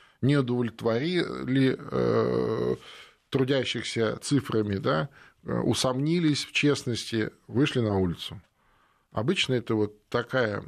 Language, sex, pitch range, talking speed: Russian, male, 105-135 Hz, 90 wpm